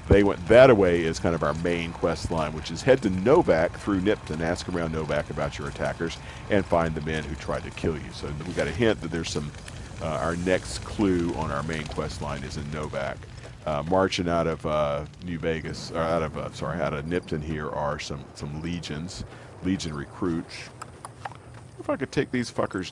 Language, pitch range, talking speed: English, 80-105 Hz, 210 wpm